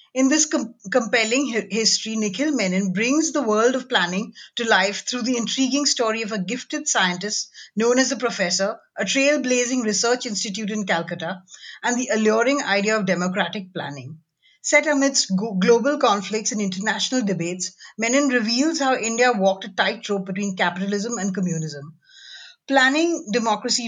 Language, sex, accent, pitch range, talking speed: English, female, Indian, 195-260 Hz, 145 wpm